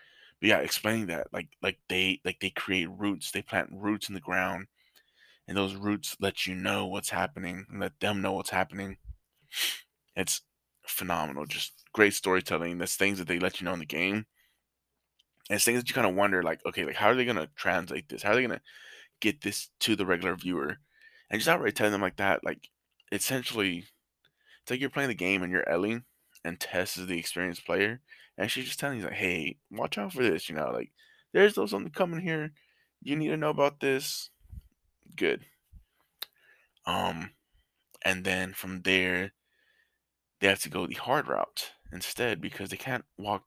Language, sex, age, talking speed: English, male, 20-39, 190 wpm